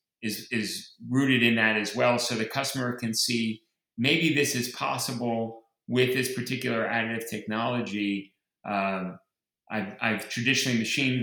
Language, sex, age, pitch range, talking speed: English, male, 30-49, 110-130 Hz, 140 wpm